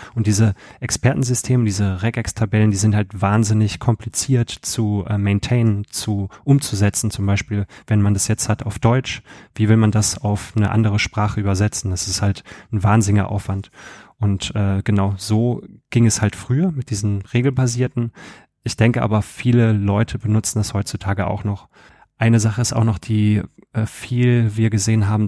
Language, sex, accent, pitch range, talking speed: German, male, German, 100-115 Hz, 165 wpm